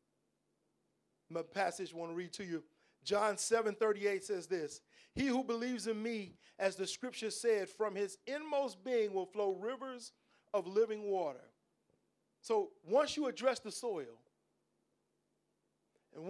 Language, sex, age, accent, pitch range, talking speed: English, male, 40-59, American, 195-250 Hz, 145 wpm